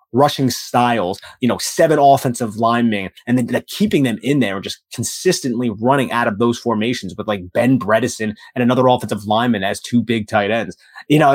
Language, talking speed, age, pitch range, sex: English, 190 wpm, 30-49, 115-145 Hz, male